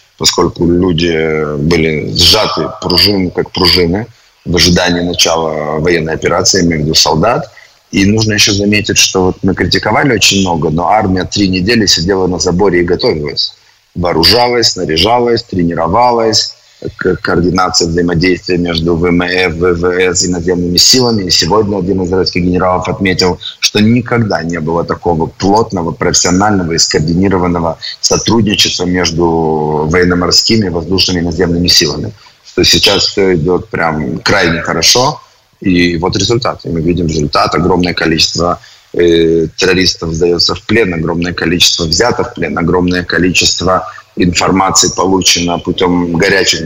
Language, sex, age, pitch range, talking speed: English, male, 20-39, 85-95 Hz, 125 wpm